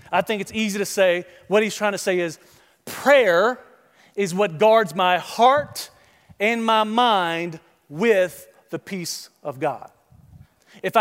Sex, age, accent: male, 40-59, American